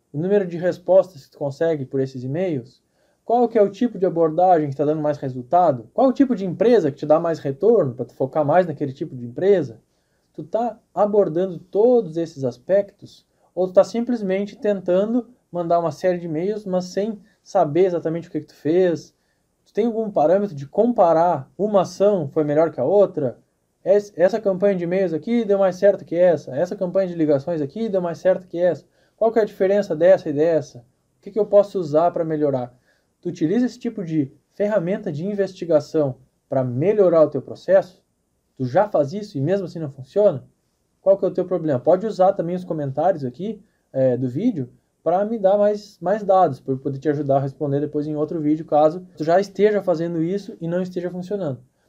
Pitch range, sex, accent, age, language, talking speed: 150-200 Hz, male, Brazilian, 20-39, Portuguese, 205 wpm